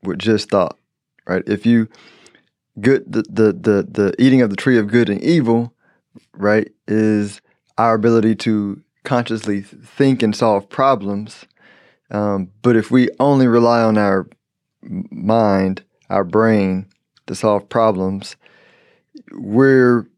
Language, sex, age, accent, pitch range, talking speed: English, male, 20-39, American, 100-115 Hz, 130 wpm